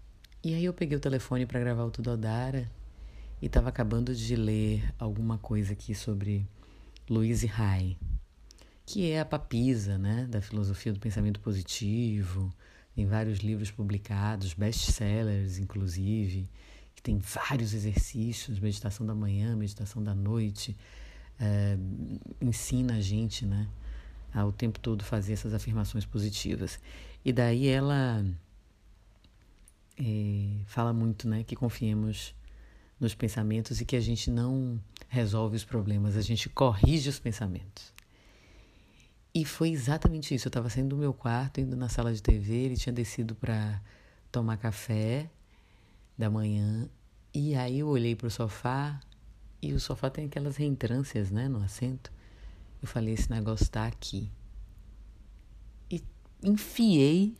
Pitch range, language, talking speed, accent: 100-120 Hz, Portuguese, 135 wpm, Brazilian